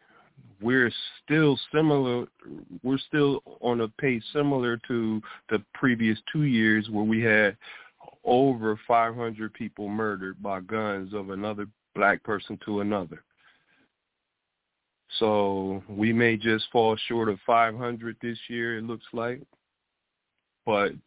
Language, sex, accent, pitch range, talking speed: English, male, American, 100-115 Hz, 120 wpm